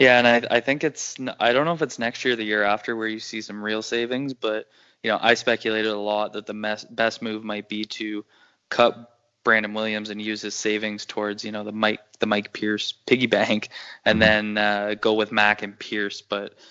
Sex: male